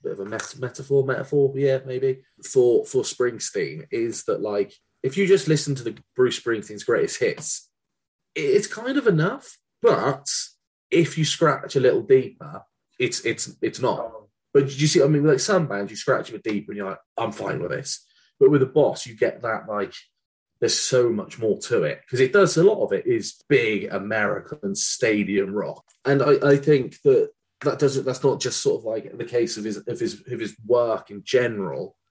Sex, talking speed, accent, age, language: male, 205 wpm, British, 30-49, English